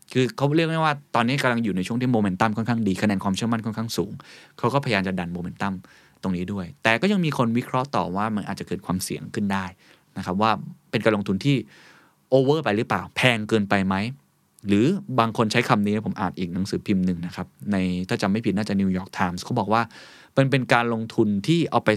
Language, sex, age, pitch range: Thai, male, 20-39, 100-130 Hz